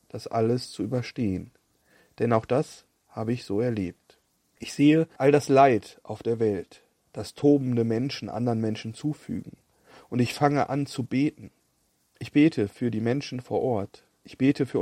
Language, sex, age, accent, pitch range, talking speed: German, male, 40-59, German, 110-135 Hz, 165 wpm